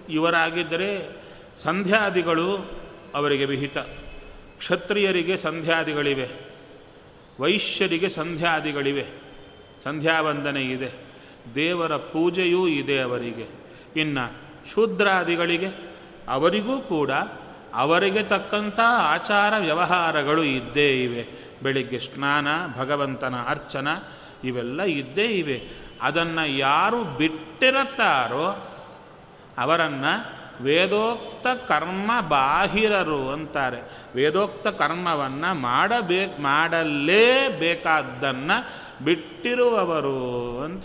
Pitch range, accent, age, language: 140-185 Hz, native, 40-59, Kannada